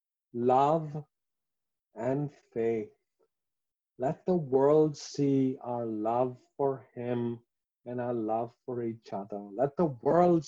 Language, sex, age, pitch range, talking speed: English, male, 50-69, 120-160 Hz, 115 wpm